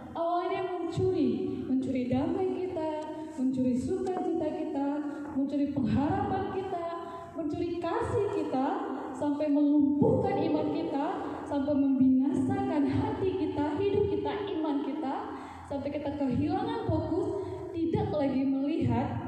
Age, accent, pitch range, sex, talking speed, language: 20-39, Indonesian, 265-335 Hz, female, 105 wpm, English